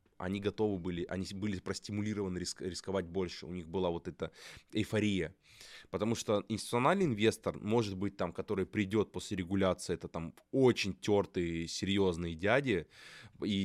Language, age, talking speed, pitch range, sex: Russian, 20-39, 145 wpm, 90-105 Hz, male